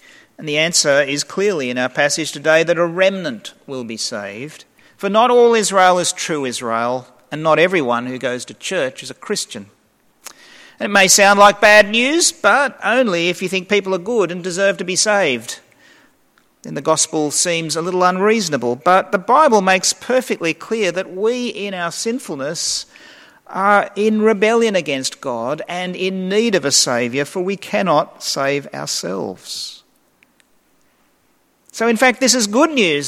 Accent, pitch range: Australian, 155-215 Hz